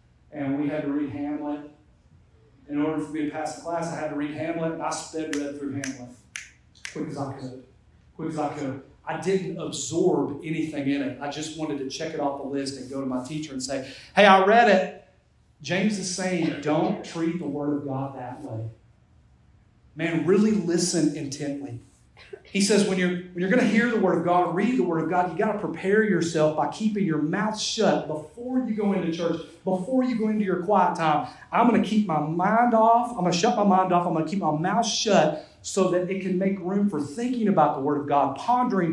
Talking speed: 230 wpm